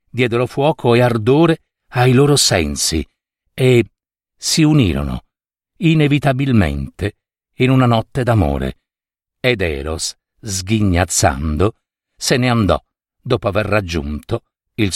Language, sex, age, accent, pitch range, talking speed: Italian, male, 50-69, native, 105-150 Hz, 100 wpm